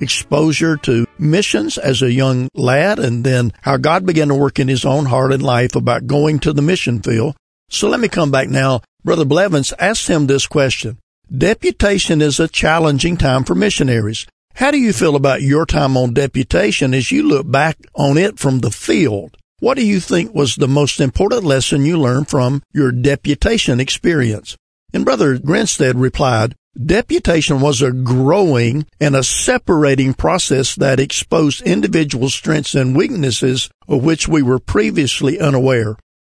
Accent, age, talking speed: American, 50-69, 170 wpm